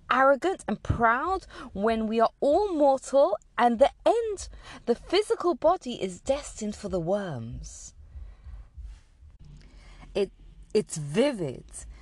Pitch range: 165-250 Hz